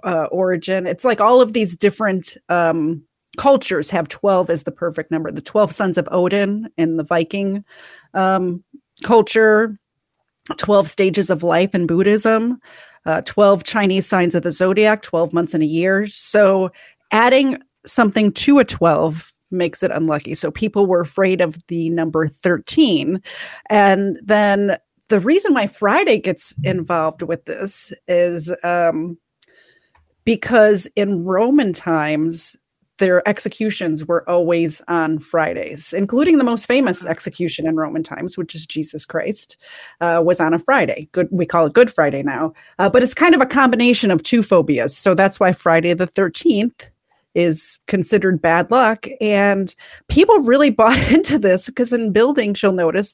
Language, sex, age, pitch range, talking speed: English, female, 30-49, 170-215 Hz, 155 wpm